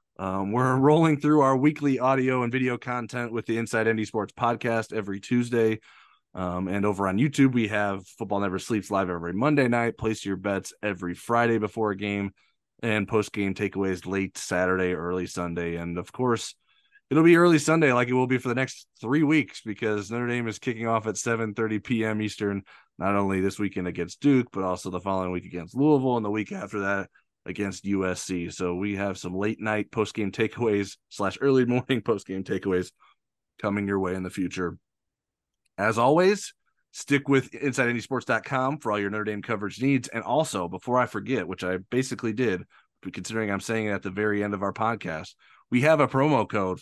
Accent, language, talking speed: American, English, 190 wpm